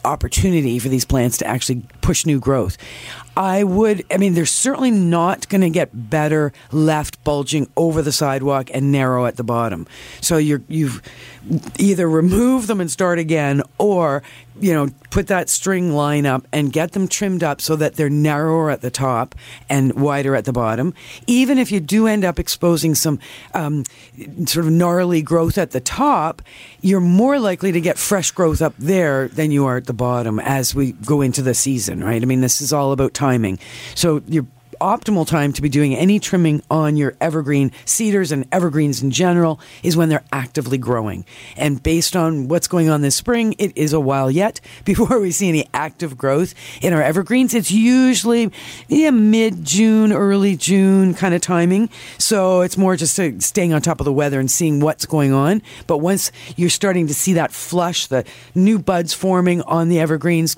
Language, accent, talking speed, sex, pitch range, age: English, American, 190 wpm, female, 135-180 Hz, 50-69